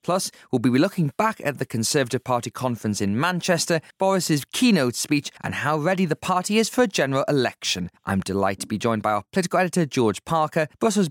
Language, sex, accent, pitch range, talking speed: English, male, British, 120-175 Hz, 200 wpm